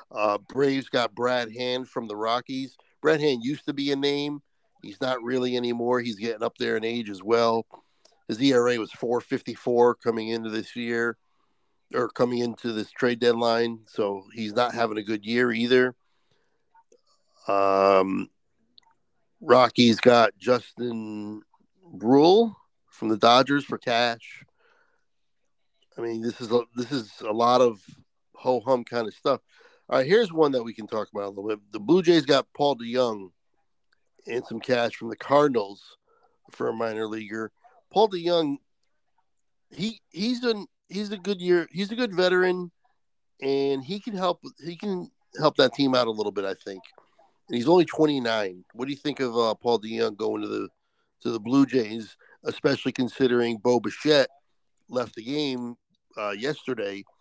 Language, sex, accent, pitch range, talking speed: English, male, American, 115-145 Hz, 165 wpm